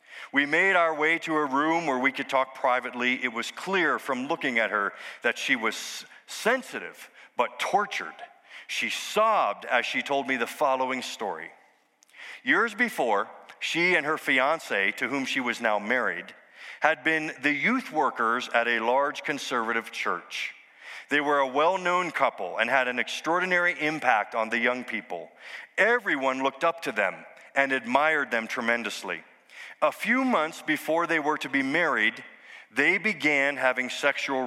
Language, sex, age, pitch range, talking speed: English, male, 40-59, 125-165 Hz, 160 wpm